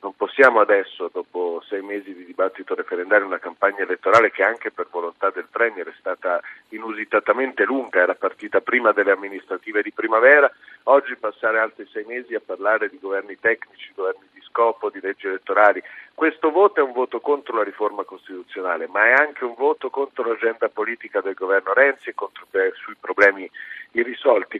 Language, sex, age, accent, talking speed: Italian, male, 50-69, native, 170 wpm